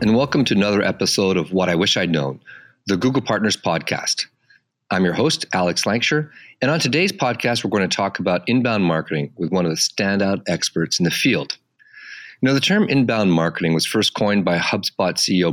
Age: 40-59